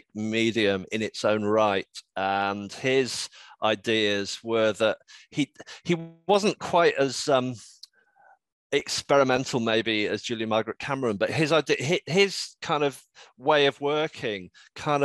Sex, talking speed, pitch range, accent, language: male, 130 wpm, 105-130 Hz, British, English